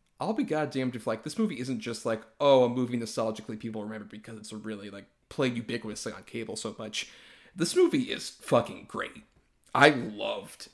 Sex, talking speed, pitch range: male, 185 wpm, 115-145 Hz